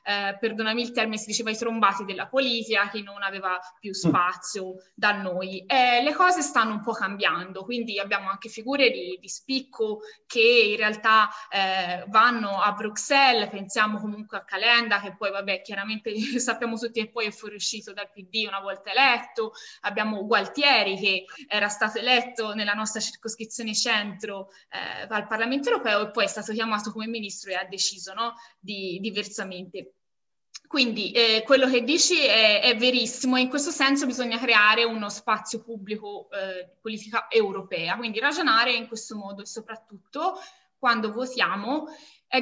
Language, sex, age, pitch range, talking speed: Italian, female, 20-39, 200-250 Hz, 165 wpm